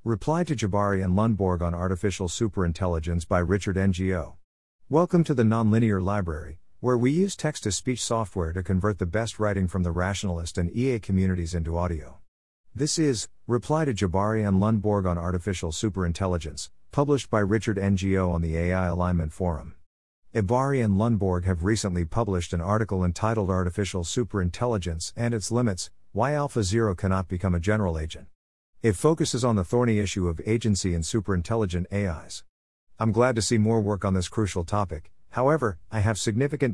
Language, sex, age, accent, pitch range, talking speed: English, male, 50-69, American, 90-115 Hz, 165 wpm